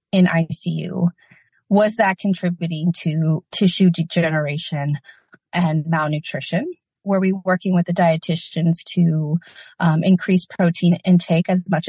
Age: 30-49